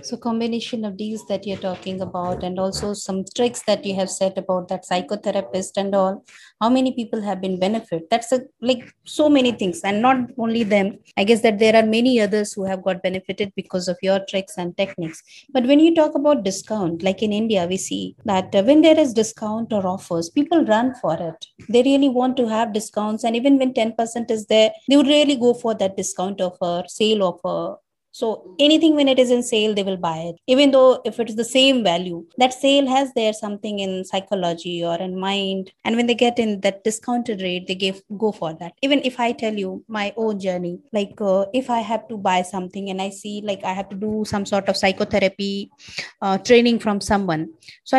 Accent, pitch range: Indian, 190-240 Hz